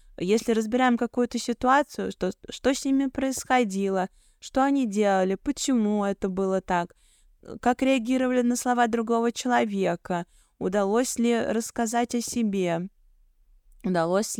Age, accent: 20-39, native